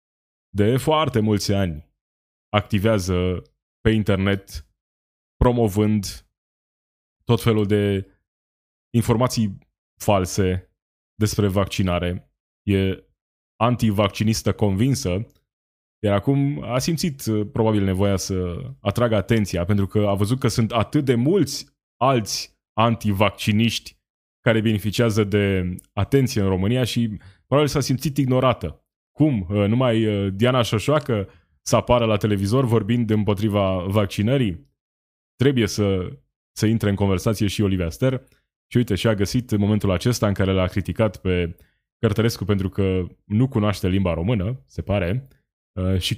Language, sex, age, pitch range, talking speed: Romanian, male, 20-39, 95-120 Hz, 120 wpm